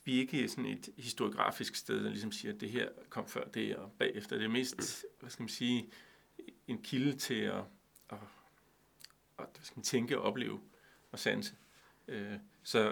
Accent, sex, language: native, male, Danish